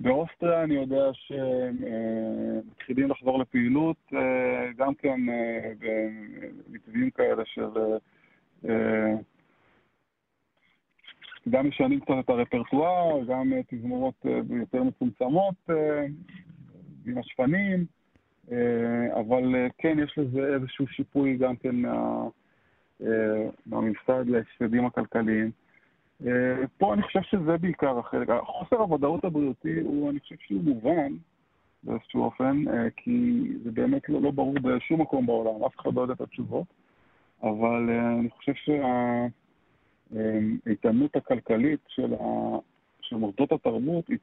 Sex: male